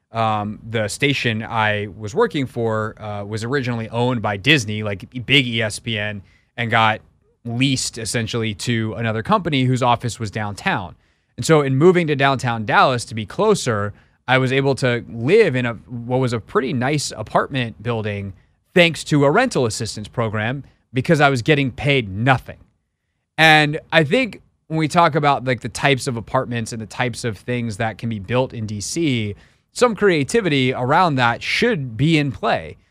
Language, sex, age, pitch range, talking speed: English, male, 30-49, 115-150 Hz, 170 wpm